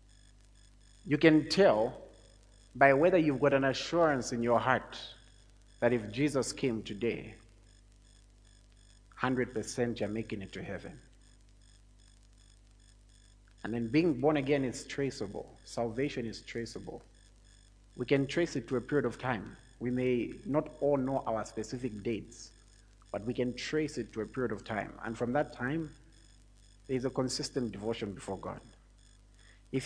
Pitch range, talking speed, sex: 110-145 Hz, 145 wpm, male